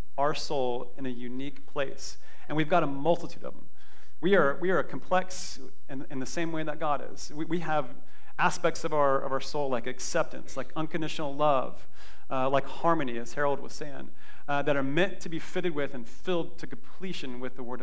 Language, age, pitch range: English, 40-59, 135-165 Hz